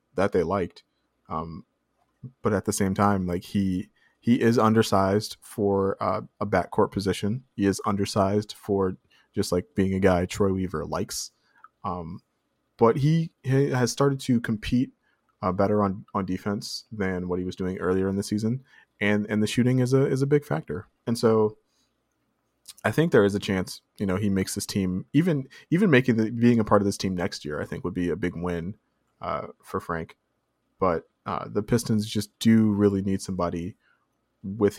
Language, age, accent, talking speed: English, 20-39, American, 190 wpm